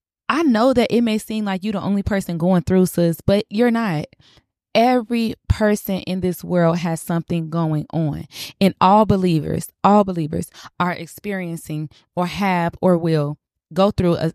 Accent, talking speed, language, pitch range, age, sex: American, 165 wpm, English, 160-195 Hz, 20-39, female